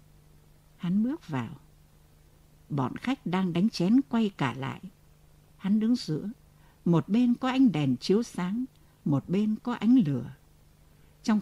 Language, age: Vietnamese, 60-79